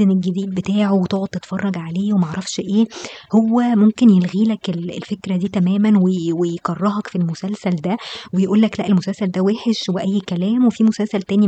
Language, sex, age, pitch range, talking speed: Arabic, male, 20-39, 180-215 Hz, 145 wpm